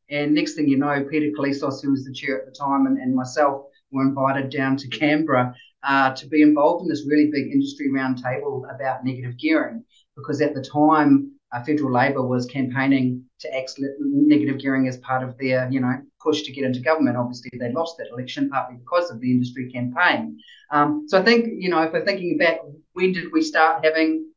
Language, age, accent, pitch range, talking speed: English, 30-49, Australian, 135-165 Hz, 210 wpm